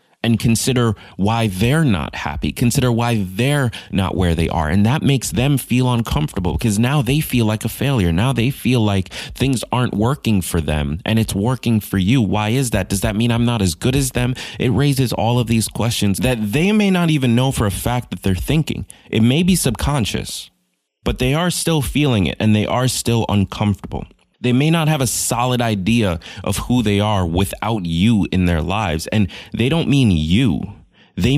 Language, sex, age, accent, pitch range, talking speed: English, male, 20-39, American, 90-125 Hz, 205 wpm